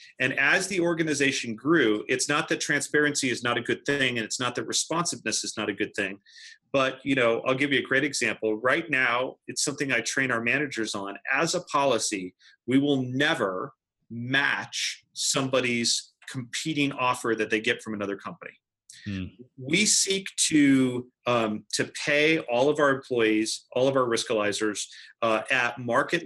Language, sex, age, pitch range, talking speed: English, male, 40-59, 115-145 Hz, 170 wpm